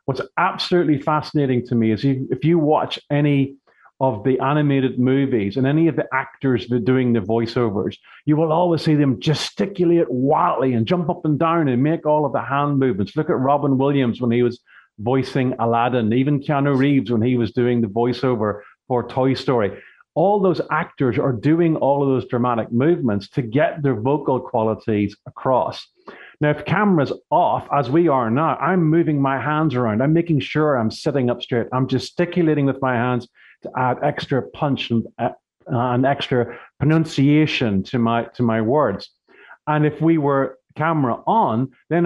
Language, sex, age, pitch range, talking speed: English, male, 40-59, 120-150 Hz, 180 wpm